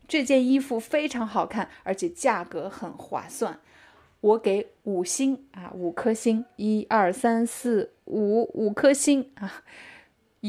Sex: female